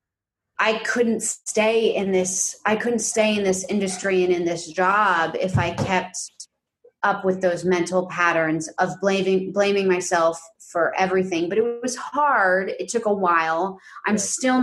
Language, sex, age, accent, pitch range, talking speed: English, female, 30-49, American, 185-235 Hz, 160 wpm